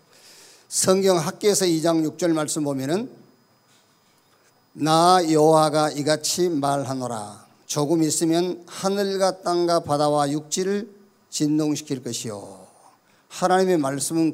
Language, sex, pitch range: Korean, male, 140-185 Hz